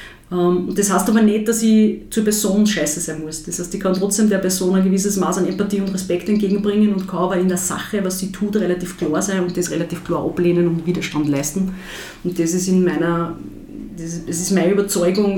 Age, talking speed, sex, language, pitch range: 30-49, 215 wpm, female, German, 160-190 Hz